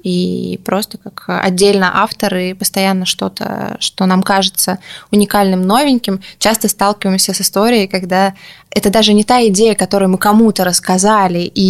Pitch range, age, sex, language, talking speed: 190-215 Hz, 20-39, female, Russian, 140 wpm